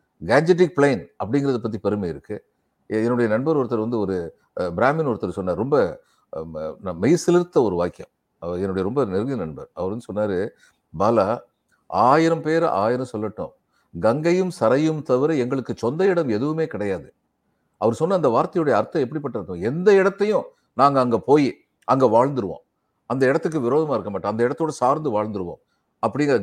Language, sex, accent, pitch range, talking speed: Tamil, male, native, 125-170 Hz, 145 wpm